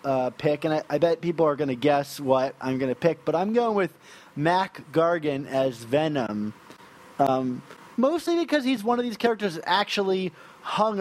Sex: male